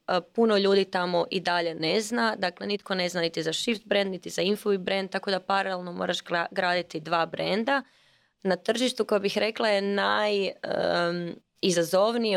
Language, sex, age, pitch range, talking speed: Croatian, female, 20-39, 170-200 Hz, 160 wpm